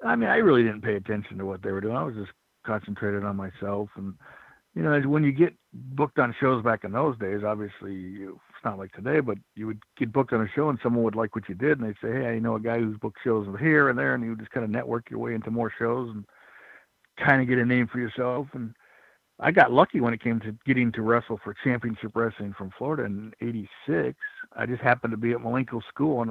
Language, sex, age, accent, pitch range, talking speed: English, male, 60-79, American, 110-130 Hz, 255 wpm